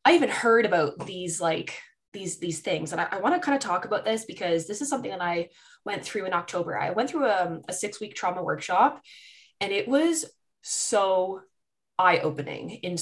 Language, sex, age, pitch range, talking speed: English, female, 20-39, 175-215 Hz, 200 wpm